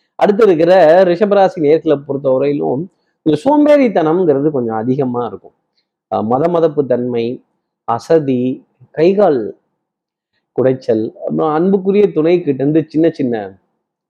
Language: Tamil